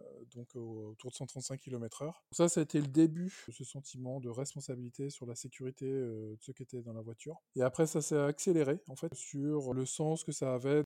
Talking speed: 220 wpm